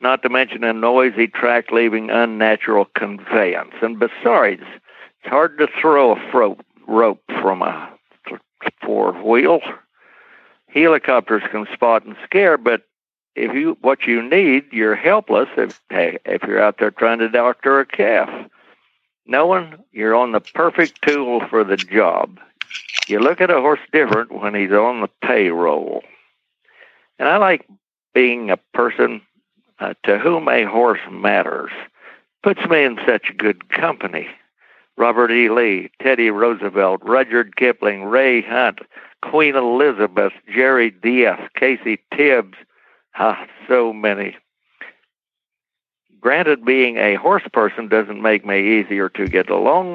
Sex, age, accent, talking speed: male, 60-79, American, 135 wpm